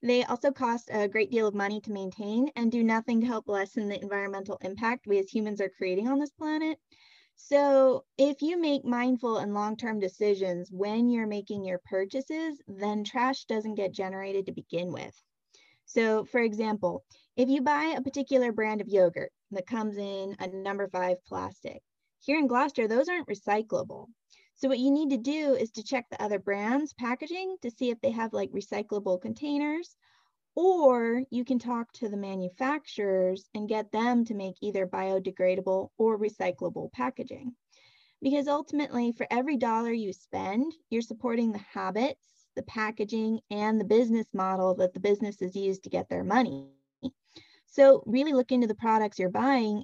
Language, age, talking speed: English, 10-29, 170 wpm